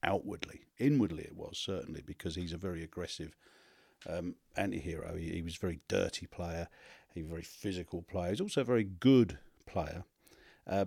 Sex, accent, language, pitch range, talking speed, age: male, British, English, 85-100 Hz, 180 wpm, 40-59